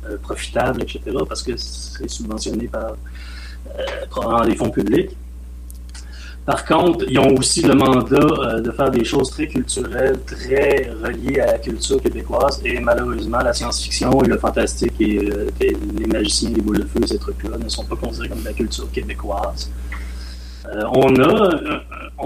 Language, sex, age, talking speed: French, male, 30-49, 160 wpm